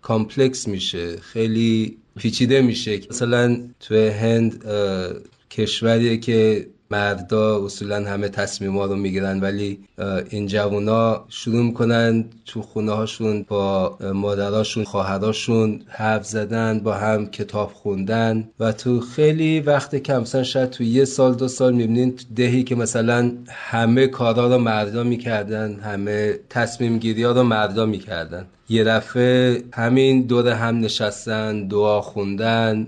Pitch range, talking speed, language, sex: 105-120 Hz, 130 wpm, Persian, male